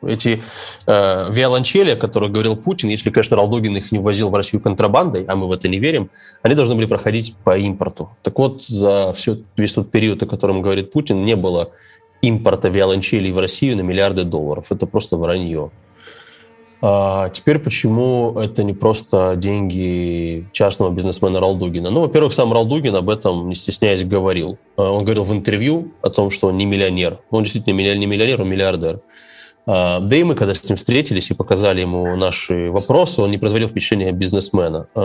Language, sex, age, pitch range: Russian, male, 20-39, 95-115 Hz